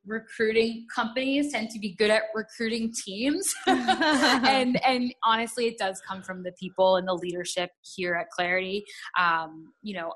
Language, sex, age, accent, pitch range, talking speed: English, female, 10-29, American, 180-225 Hz, 160 wpm